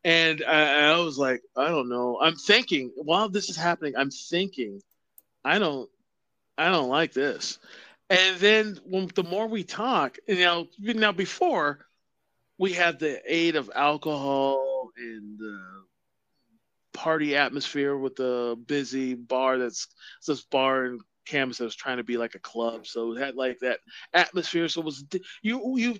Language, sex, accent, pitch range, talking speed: English, male, American, 130-185 Hz, 165 wpm